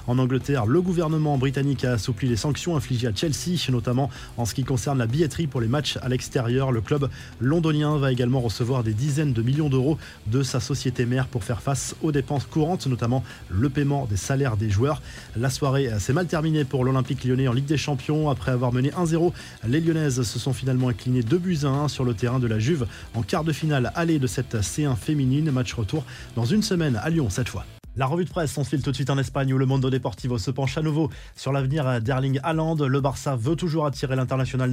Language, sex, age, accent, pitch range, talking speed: French, male, 20-39, French, 125-145 Hz, 225 wpm